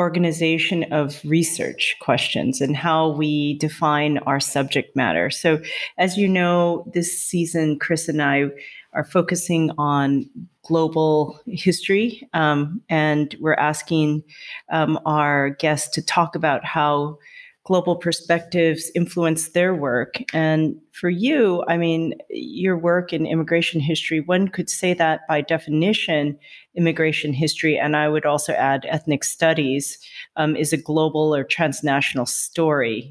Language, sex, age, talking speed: English, female, 40-59, 130 wpm